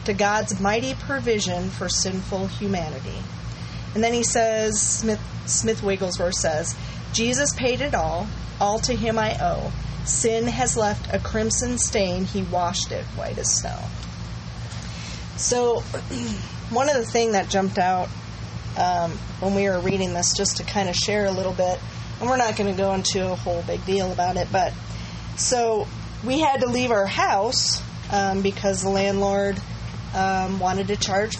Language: English